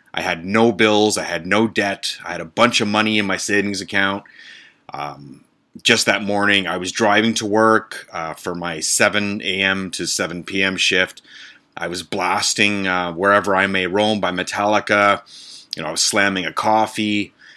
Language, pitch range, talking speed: English, 95-105 Hz, 180 wpm